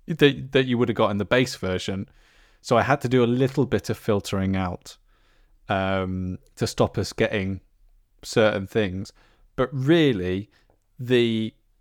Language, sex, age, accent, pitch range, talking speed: English, male, 20-39, British, 105-135 Hz, 150 wpm